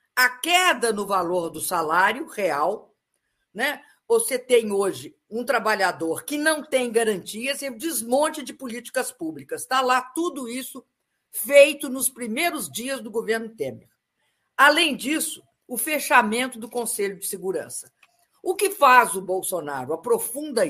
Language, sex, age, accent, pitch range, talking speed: Portuguese, female, 50-69, Brazilian, 205-280 Hz, 135 wpm